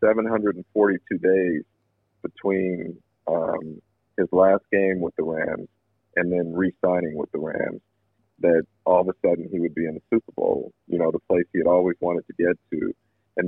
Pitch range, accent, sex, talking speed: 90-105 Hz, American, male, 180 wpm